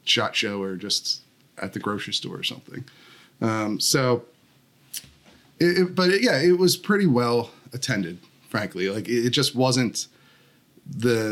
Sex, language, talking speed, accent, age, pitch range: male, English, 155 wpm, American, 30-49, 110-135 Hz